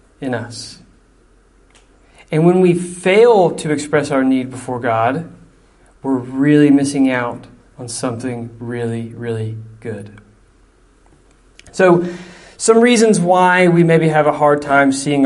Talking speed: 125 wpm